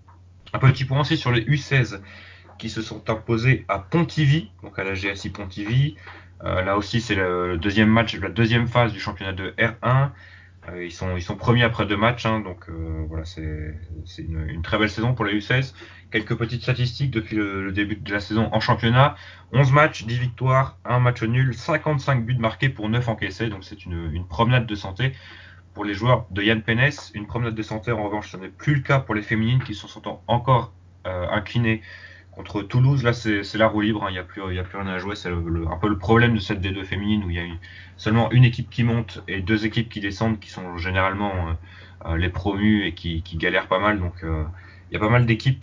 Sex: male